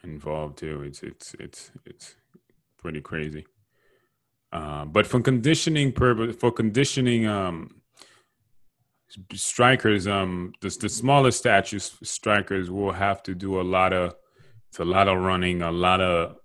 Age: 30-49